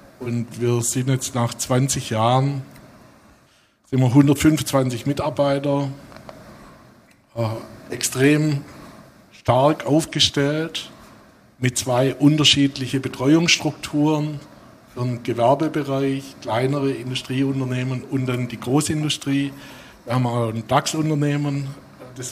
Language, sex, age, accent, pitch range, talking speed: German, male, 60-79, German, 120-145 Hz, 90 wpm